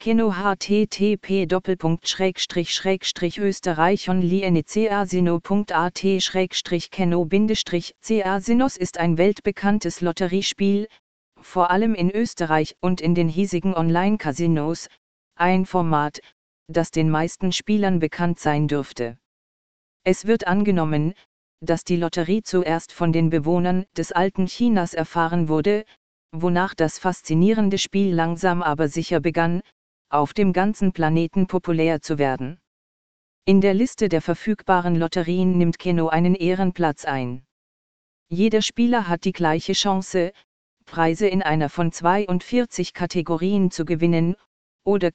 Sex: female